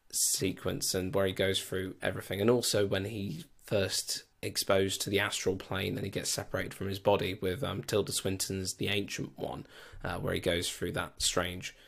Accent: British